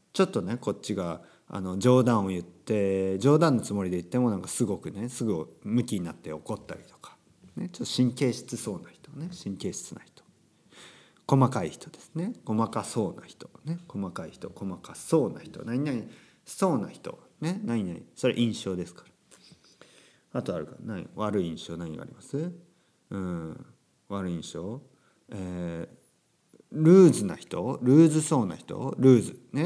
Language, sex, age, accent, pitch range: Japanese, male, 50-69, native, 100-140 Hz